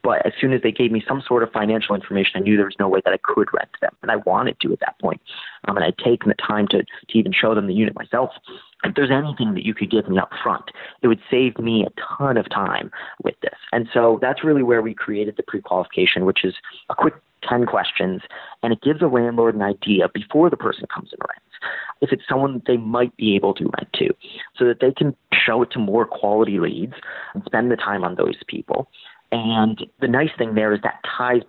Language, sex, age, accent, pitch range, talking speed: English, male, 30-49, American, 95-120 Hz, 245 wpm